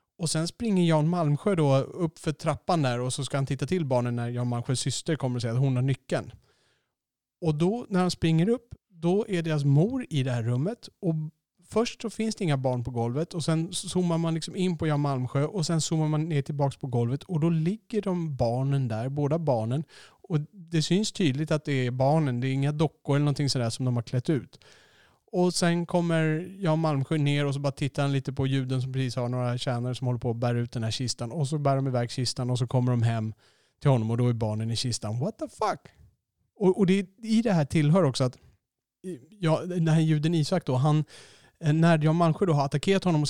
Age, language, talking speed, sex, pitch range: 30-49, Swedish, 240 wpm, male, 130-170 Hz